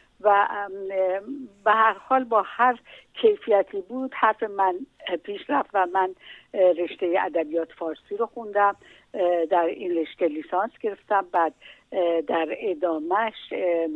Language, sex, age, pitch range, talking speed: Persian, female, 60-79, 175-215 Hz, 115 wpm